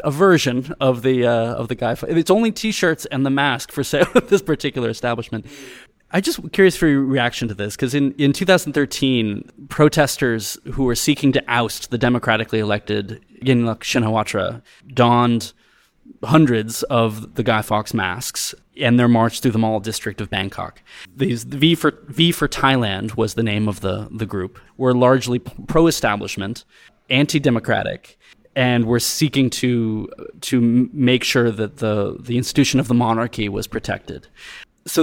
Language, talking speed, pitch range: English, 165 wpm, 115-140 Hz